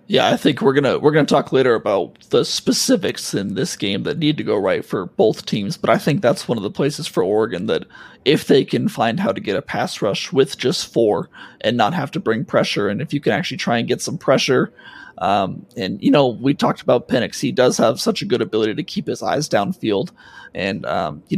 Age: 30-49